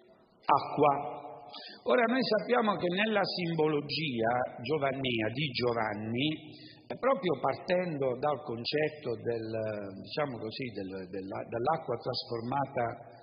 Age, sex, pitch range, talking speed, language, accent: 50-69, male, 125-185 Hz, 90 wpm, Italian, native